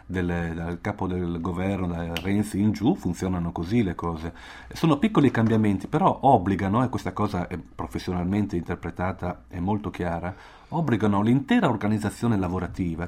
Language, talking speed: Italian, 140 wpm